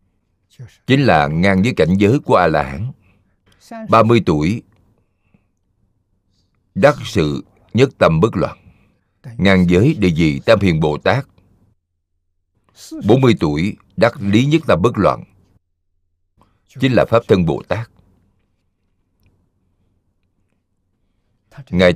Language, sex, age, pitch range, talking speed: Vietnamese, male, 60-79, 90-110 Hz, 105 wpm